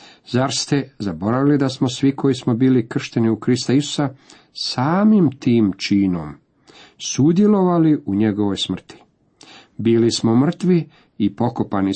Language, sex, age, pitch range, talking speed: Croatian, male, 50-69, 100-130 Hz, 125 wpm